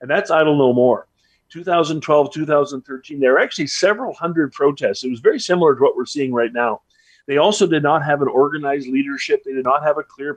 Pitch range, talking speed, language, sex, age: 130-170 Hz, 215 wpm, English, male, 40-59